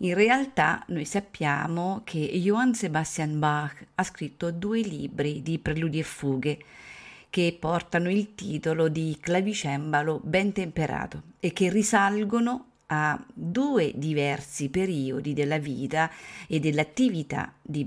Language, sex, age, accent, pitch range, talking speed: Italian, female, 40-59, native, 150-195 Hz, 120 wpm